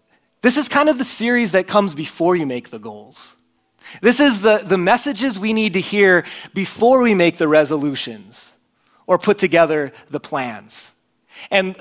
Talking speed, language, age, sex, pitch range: 170 wpm, English, 30-49, male, 135-205 Hz